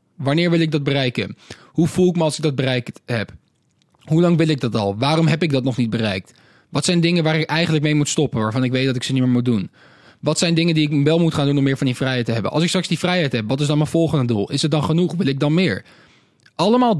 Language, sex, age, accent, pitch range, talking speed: Dutch, male, 20-39, Dutch, 130-170 Hz, 295 wpm